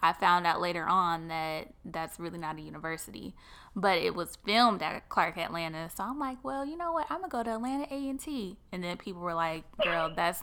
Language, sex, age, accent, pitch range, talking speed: English, female, 10-29, American, 170-205 Hz, 225 wpm